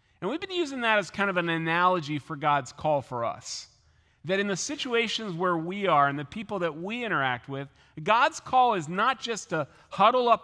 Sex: male